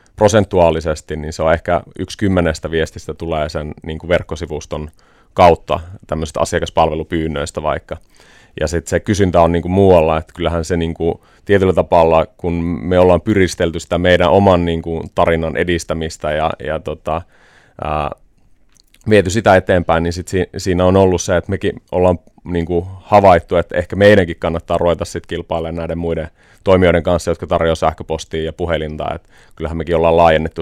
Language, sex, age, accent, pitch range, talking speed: Finnish, male, 30-49, native, 80-90 Hz, 160 wpm